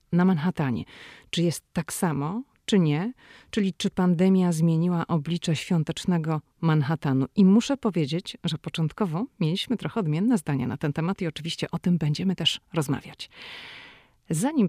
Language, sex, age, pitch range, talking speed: Polish, female, 30-49, 150-185 Hz, 145 wpm